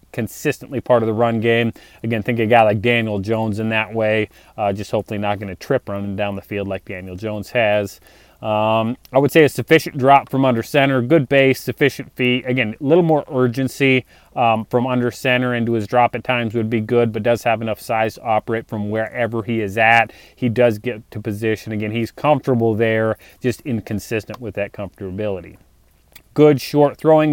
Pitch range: 110-130 Hz